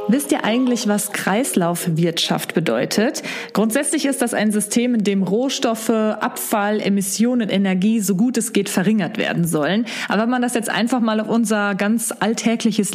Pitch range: 205-255 Hz